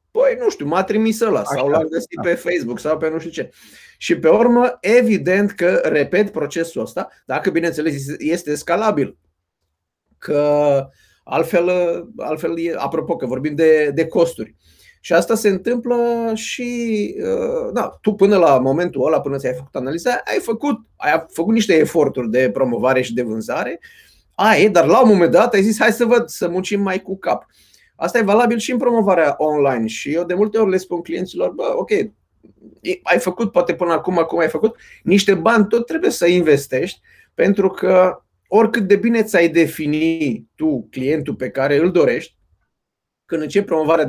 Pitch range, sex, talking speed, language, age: 155-230 Hz, male, 170 wpm, Romanian, 30-49